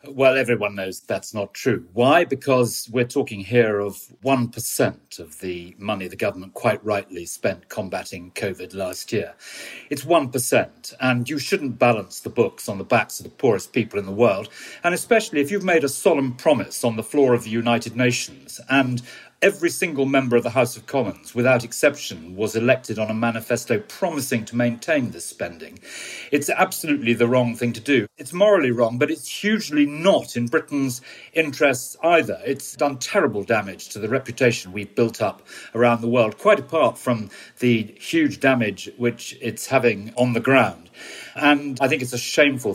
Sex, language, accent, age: male, English, British, 40-59